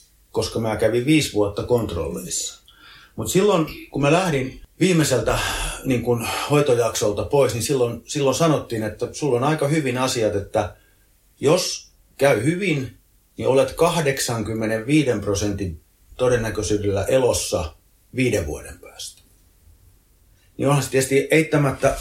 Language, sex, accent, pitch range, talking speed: Finnish, male, native, 100-130 Hz, 115 wpm